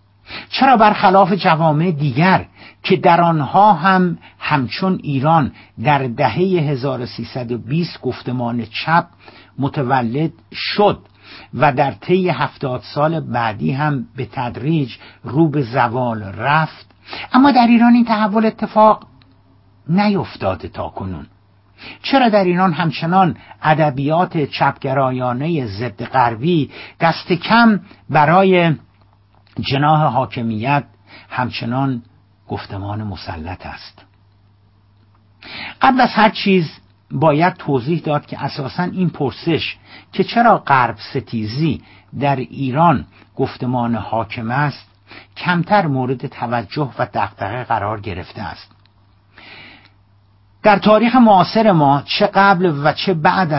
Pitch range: 110-170 Hz